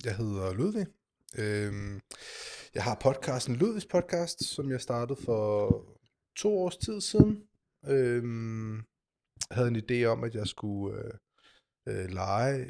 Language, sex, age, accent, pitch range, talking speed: Danish, male, 20-39, native, 100-125 Hz, 135 wpm